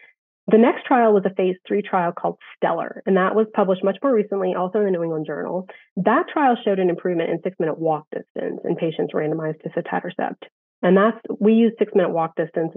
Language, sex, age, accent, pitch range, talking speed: English, female, 30-49, American, 170-215 Hz, 205 wpm